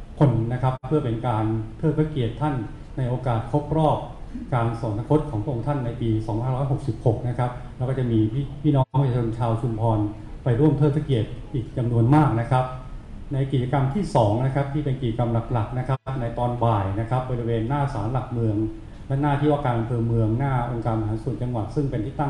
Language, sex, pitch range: Thai, male, 110-135 Hz